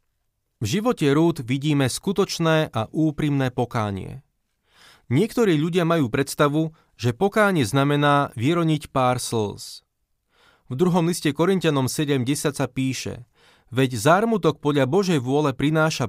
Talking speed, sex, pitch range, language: 115 wpm, male, 120-160 Hz, Slovak